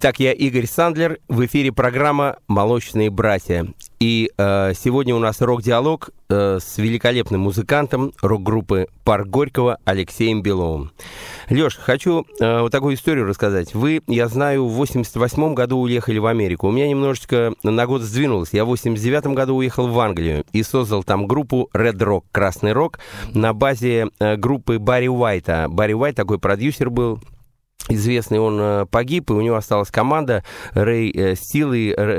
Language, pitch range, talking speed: Russian, 105-130 Hz, 155 wpm